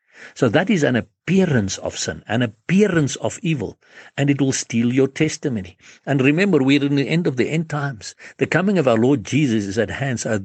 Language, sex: English, male